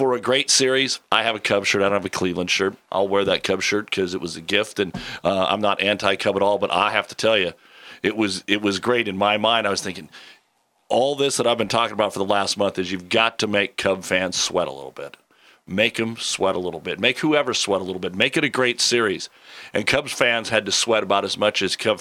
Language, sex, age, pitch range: English, male, 40-59, 100-120 Hz